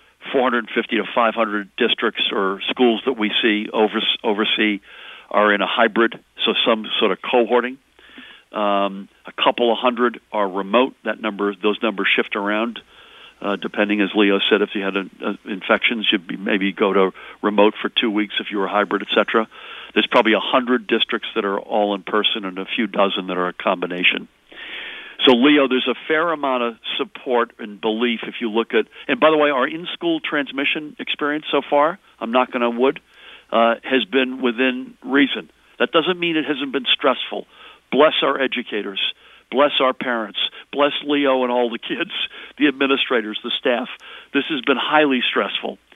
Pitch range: 105-135 Hz